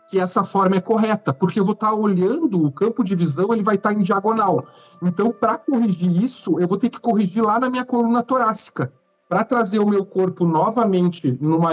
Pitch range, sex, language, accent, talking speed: 165-215 Hz, male, Portuguese, Brazilian, 205 wpm